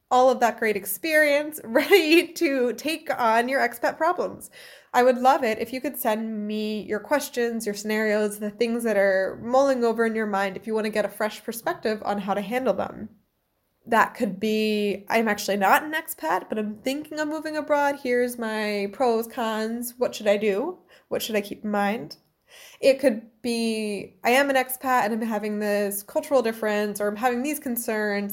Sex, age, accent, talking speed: female, 20-39, American, 195 wpm